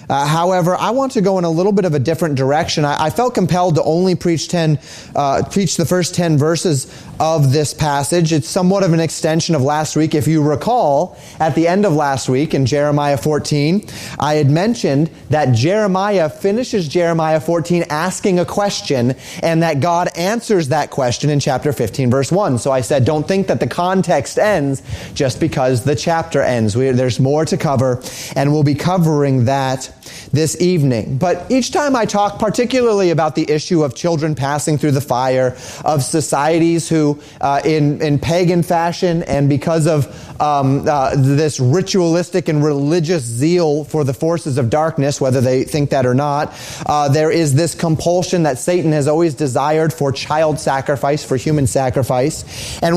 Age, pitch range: 30-49, 140-175 Hz